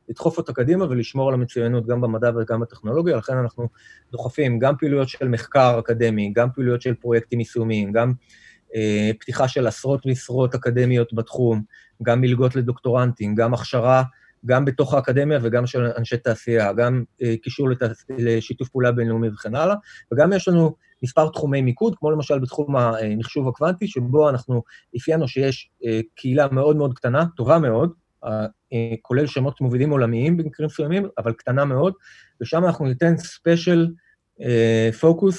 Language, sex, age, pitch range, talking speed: Hebrew, male, 30-49, 120-145 Hz, 150 wpm